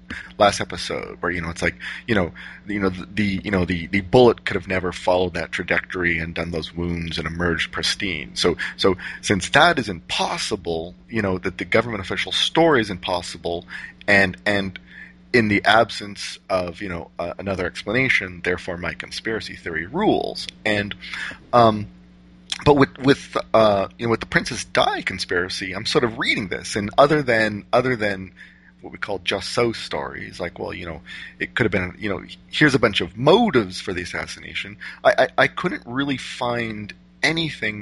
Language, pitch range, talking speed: English, 85-105 Hz, 185 wpm